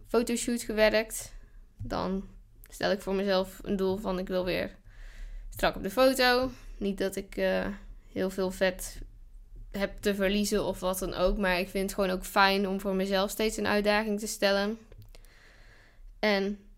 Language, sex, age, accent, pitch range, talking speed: Dutch, female, 10-29, Dutch, 180-220 Hz, 170 wpm